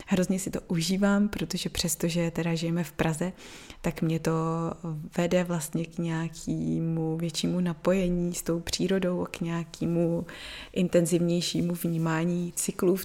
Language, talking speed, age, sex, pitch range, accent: Czech, 135 wpm, 20-39, female, 165-185 Hz, native